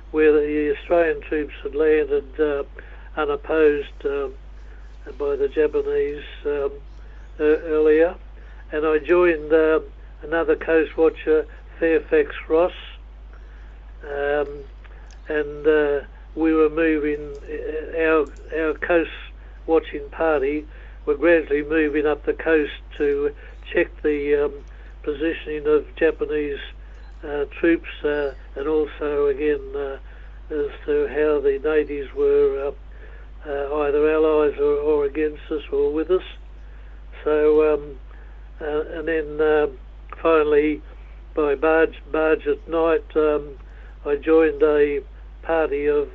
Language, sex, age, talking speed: English, male, 60-79, 120 wpm